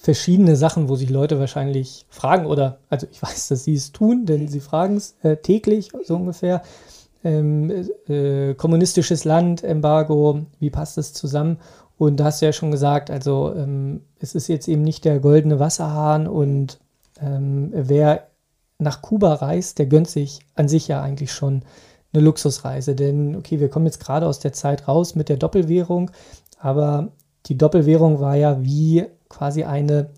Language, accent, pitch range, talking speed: German, German, 145-165 Hz, 170 wpm